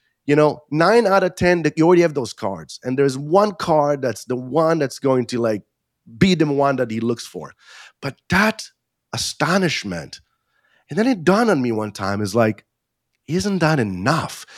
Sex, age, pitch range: male, 30-49, 110-145 Hz